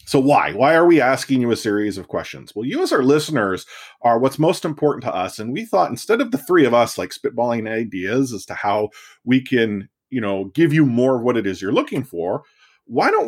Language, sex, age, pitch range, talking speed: English, male, 30-49, 115-145 Hz, 240 wpm